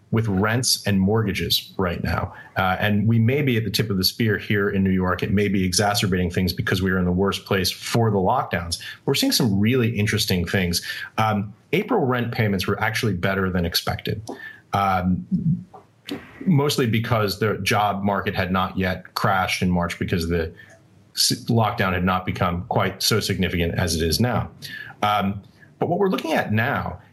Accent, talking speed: American, 185 wpm